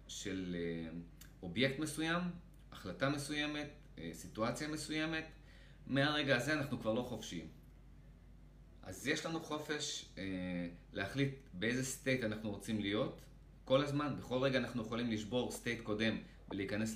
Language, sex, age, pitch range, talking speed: Hebrew, male, 30-49, 100-130 Hz, 120 wpm